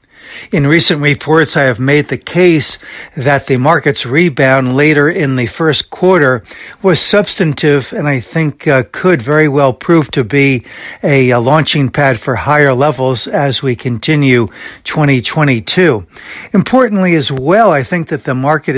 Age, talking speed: 60-79, 155 wpm